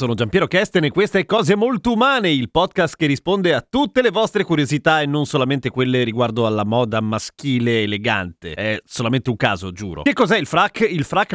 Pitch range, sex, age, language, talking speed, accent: 135-185 Hz, male, 30-49, Italian, 205 wpm, native